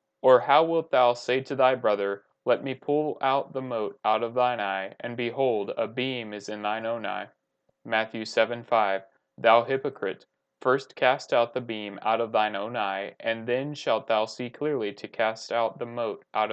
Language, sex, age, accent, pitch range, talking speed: English, male, 30-49, American, 110-130 Hz, 195 wpm